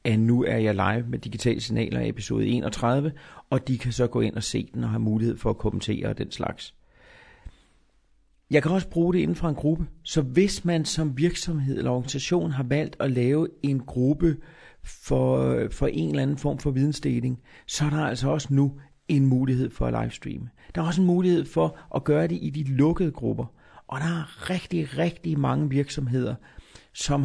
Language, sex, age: Danish, male, 40-59